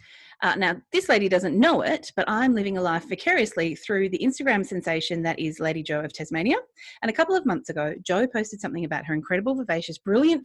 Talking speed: 215 wpm